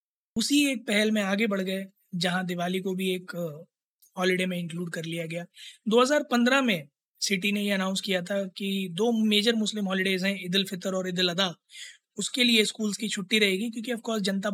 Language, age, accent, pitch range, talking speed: Hindi, 20-39, native, 180-215 Hz, 190 wpm